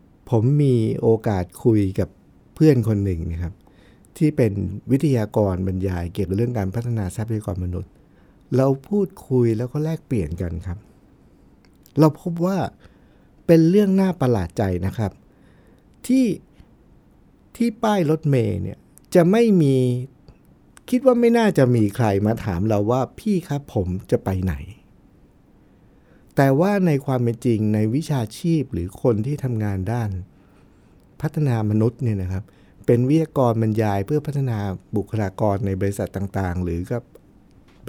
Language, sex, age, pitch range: Thai, male, 60-79, 100-145 Hz